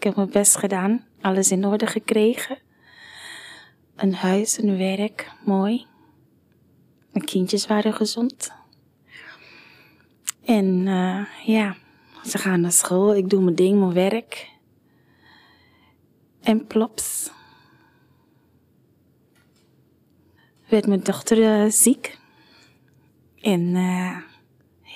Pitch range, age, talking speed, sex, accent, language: 185-220 Hz, 20-39, 95 wpm, female, Dutch, Dutch